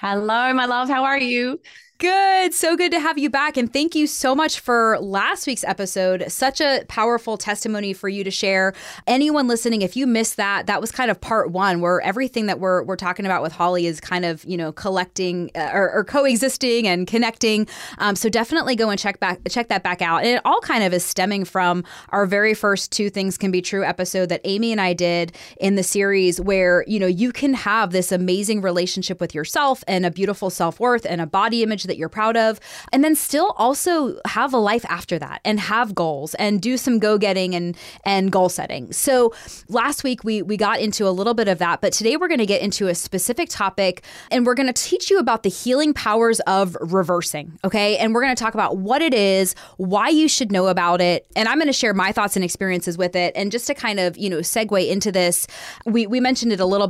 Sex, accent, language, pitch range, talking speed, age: female, American, English, 185-240 Hz, 230 wpm, 20-39